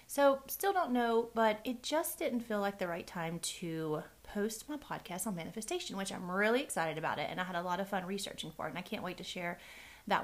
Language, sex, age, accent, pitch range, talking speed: English, female, 30-49, American, 170-220 Hz, 245 wpm